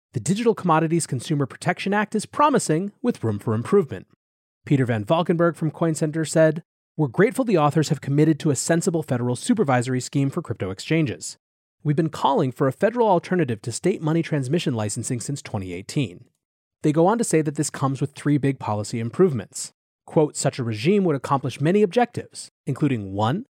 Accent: American